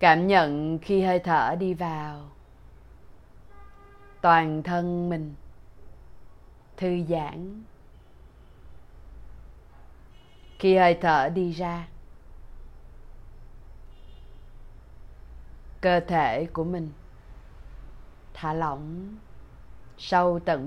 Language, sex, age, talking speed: Vietnamese, female, 20-39, 75 wpm